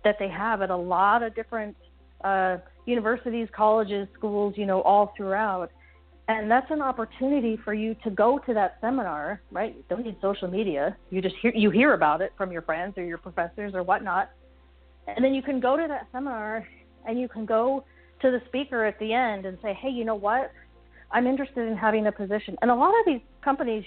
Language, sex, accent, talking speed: English, female, American, 210 wpm